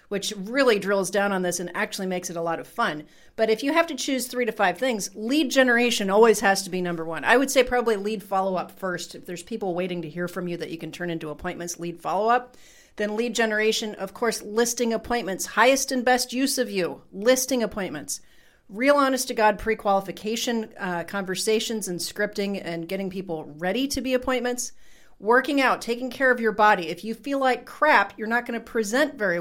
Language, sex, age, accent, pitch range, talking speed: English, female, 40-59, American, 180-245 Hz, 210 wpm